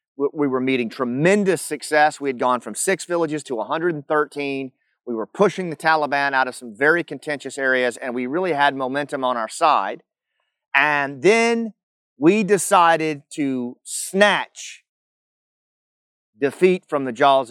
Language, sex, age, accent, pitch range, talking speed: English, male, 30-49, American, 125-160 Hz, 145 wpm